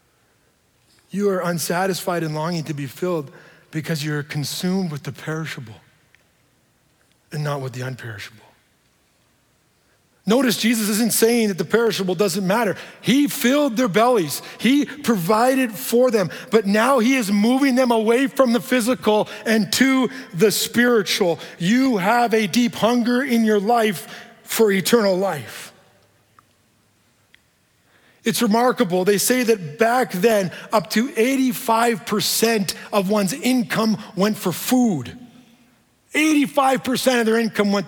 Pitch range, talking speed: 190-245 Hz, 130 wpm